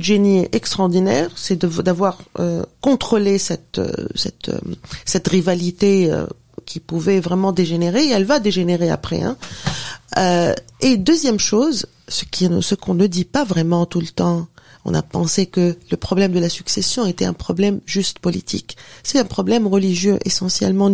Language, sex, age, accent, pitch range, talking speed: French, female, 40-59, French, 180-215 Hz, 160 wpm